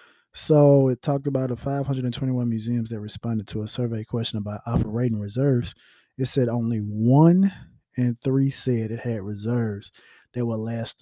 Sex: male